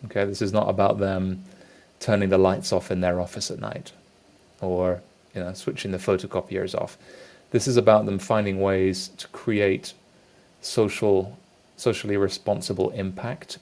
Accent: British